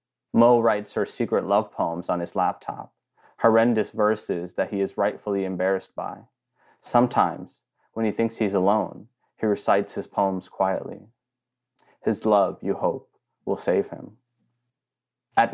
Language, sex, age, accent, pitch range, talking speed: English, male, 30-49, American, 100-120 Hz, 140 wpm